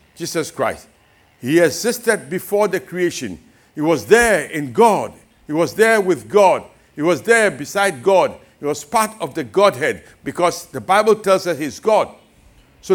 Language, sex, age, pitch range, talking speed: English, male, 60-79, 140-200 Hz, 165 wpm